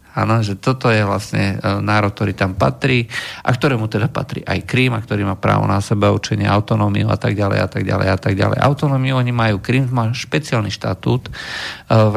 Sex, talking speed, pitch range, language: male, 200 wpm, 105-125 Hz, Slovak